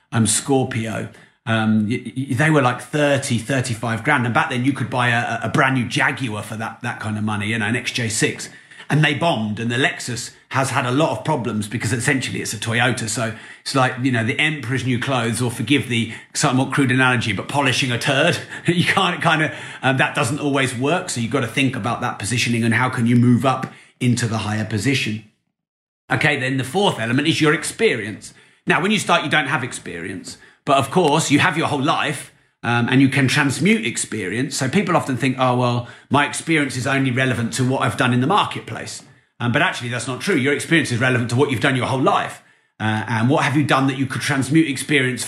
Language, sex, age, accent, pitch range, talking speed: English, male, 40-59, British, 120-145 Hz, 225 wpm